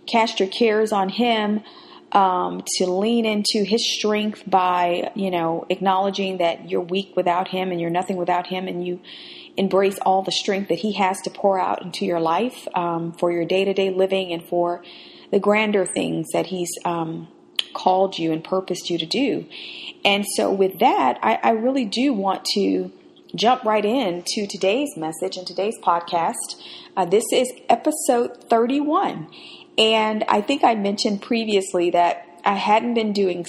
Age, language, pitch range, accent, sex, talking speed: 40-59, English, 175-225 Hz, American, female, 170 wpm